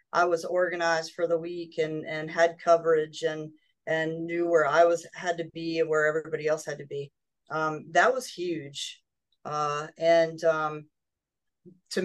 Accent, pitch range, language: American, 155-175 Hz, English